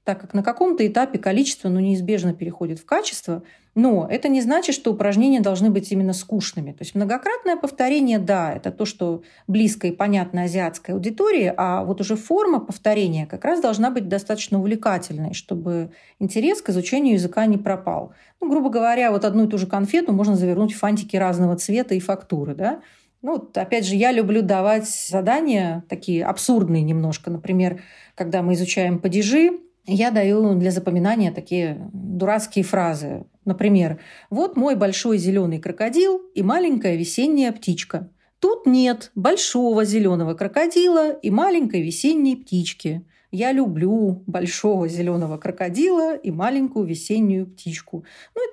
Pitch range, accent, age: 180-250 Hz, native, 40-59